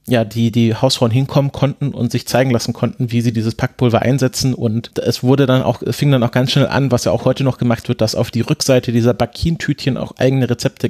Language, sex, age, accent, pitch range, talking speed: English, male, 30-49, German, 120-135 Hz, 240 wpm